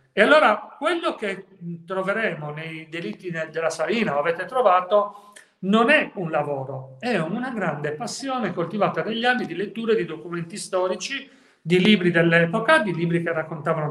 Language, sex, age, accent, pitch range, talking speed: Italian, male, 40-59, native, 165-205 Hz, 145 wpm